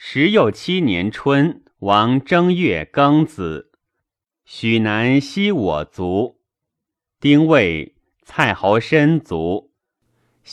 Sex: male